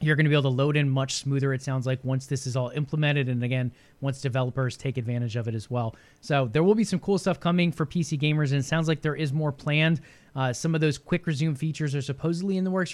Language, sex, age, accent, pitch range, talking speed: English, male, 20-39, American, 150-195 Hz, 270 wpm